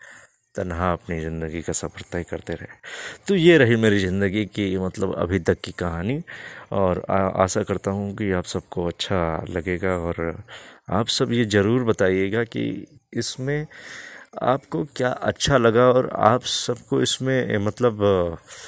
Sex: male